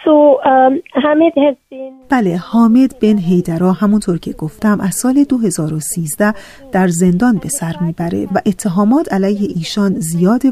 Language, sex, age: Persian, female, 30-49